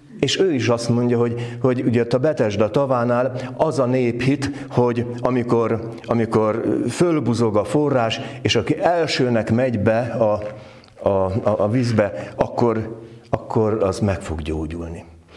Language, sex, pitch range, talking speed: Hungarian, male, 105-130 Hz, 140 wpm